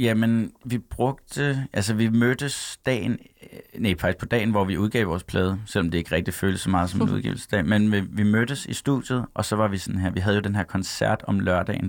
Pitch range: 90-110 Hz